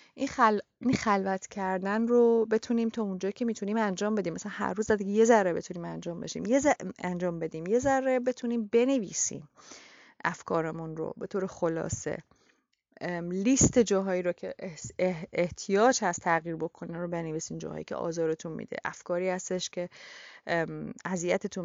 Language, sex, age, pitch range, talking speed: Persian, female, 30-49, 170-220 Hz, 150 wpm